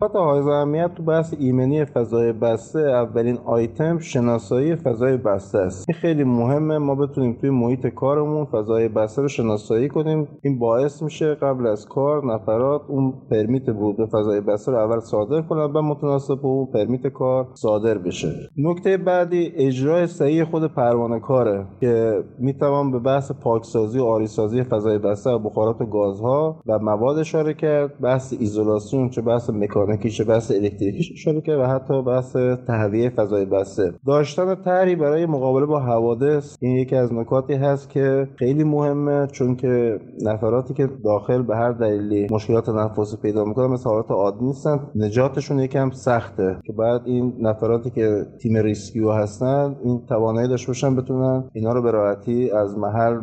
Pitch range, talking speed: 115-145 Hz, 160 wpm